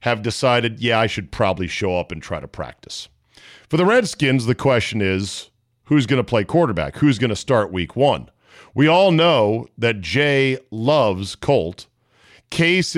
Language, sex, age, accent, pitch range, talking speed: English, male, 40-59, American, 105-145 Hz, 170 wpm